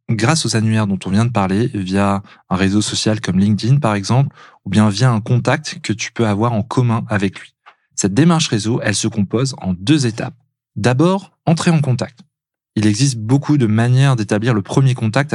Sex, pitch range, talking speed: male, 105-140 Hz, 200 wpm